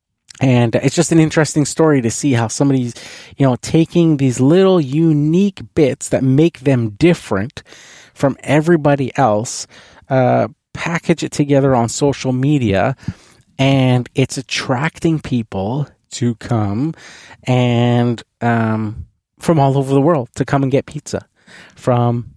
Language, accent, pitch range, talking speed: English, American, 115-145 Hz, 135 wpm